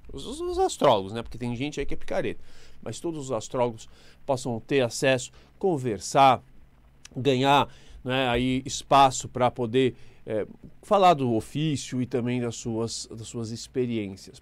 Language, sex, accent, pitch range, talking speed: Portuguese, male, Brazilian, 120-160 Hz, 135 wpm